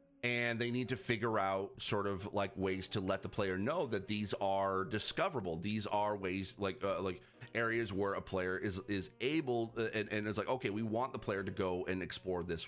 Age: 30-49